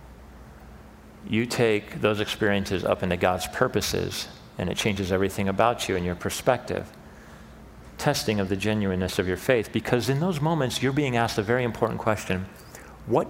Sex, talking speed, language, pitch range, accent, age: male, 160 wpm, English, 85-120 Hz, American, 40-59